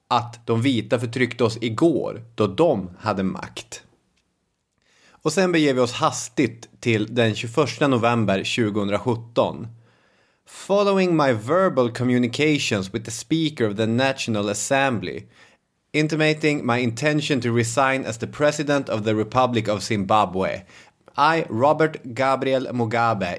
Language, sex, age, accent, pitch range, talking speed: English, male, 30-49, Swedish, 110-145 Hz, 125 wpm